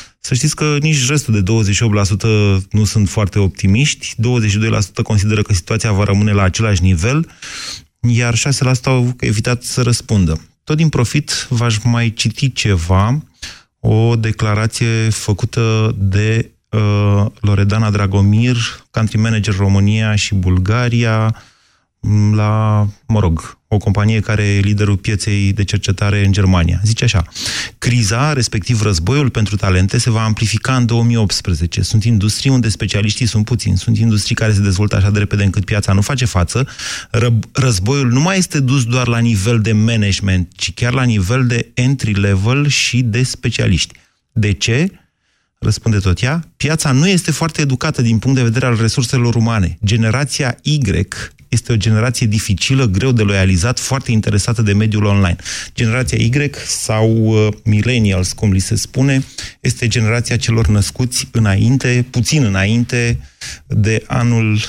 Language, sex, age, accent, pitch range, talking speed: Romanian, male, 30-49, native, 105-120 Hz, 145 wpm